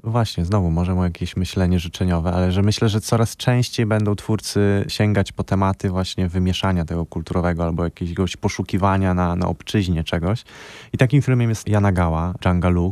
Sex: male